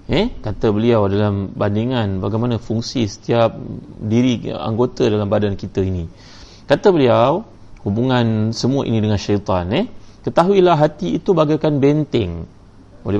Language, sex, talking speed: Malay, male, 125 wpm